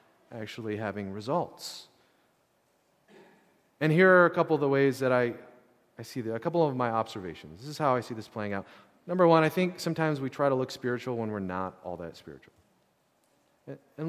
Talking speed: 195 wpm